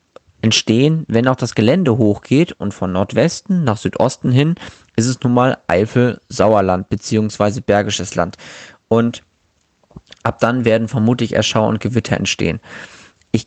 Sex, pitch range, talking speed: male, 110-140 Hz, 135 wpm